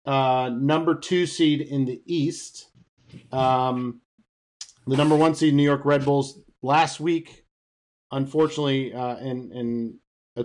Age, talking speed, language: 40-59, 130 wpm, English